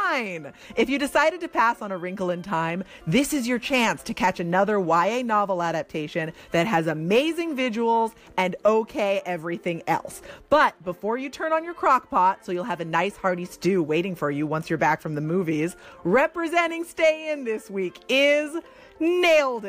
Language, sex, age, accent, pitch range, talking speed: English, female, 30-49, American, 185-285 Hz, 180 wpm